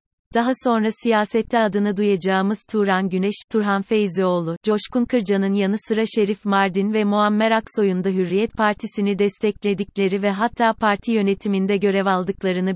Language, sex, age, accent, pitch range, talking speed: Turkish, female, 30-49, native, 190-220 Hz, 130 wpm